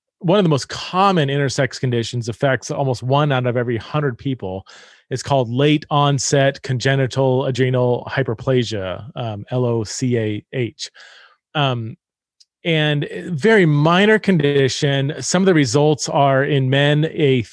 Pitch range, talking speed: 130-170 Hz, 125 wpm